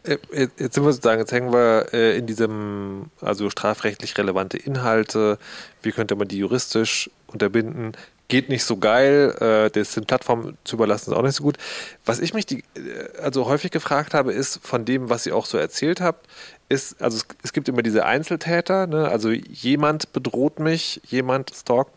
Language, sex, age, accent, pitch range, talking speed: German, male, 30-49, German, 110-145 Hz, 170 wpm